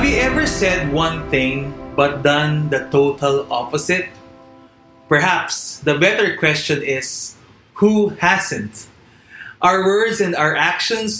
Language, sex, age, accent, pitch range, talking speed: English, male, 20-39, Filipino, 135-195 Hz, 125 wpm